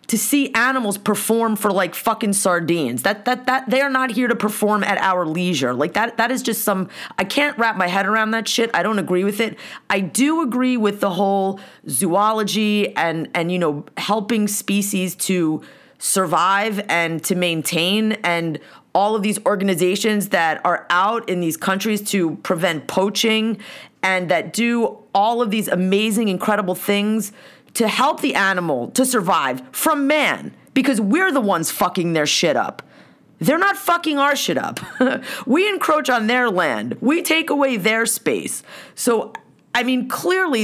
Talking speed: 170 wpm